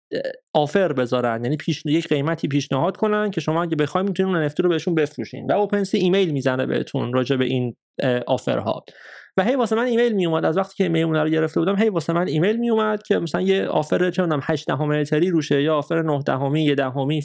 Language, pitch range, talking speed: Persian, 150-205 Hz, 210 wpm